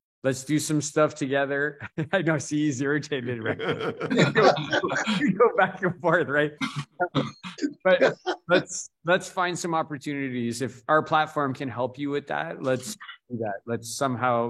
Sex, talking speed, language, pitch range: male, 150 wpm, English, 115-140 Hz